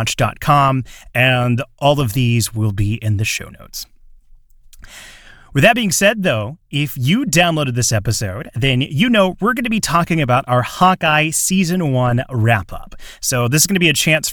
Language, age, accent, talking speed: English, 30-49, American, 175 wpm